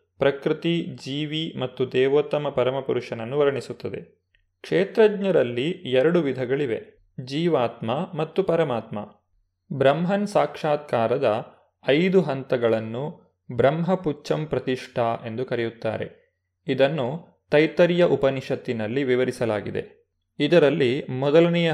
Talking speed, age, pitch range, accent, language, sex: 70 wpm, 30-49, 125-160 Hz, native, Kannada, male